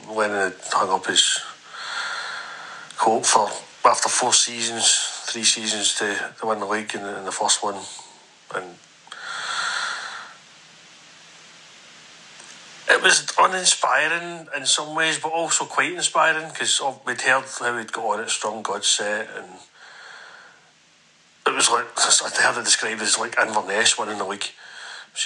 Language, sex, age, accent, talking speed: English, male, 40-59, British, 145 wpm